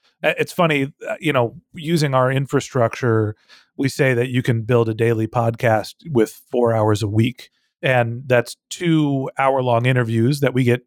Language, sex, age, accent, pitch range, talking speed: English, male, 30-49, American, 120-150 Hz, 160 wpm